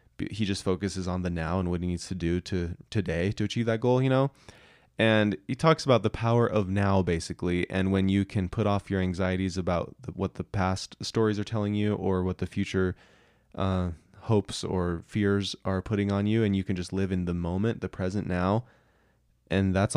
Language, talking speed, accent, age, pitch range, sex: English, 210 wpm, American, 20-39, 90-105 Hz, male